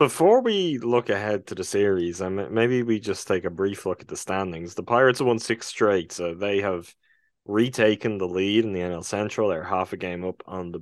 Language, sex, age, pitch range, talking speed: English, male, 20-39, 95-115 Hz, 220 wpm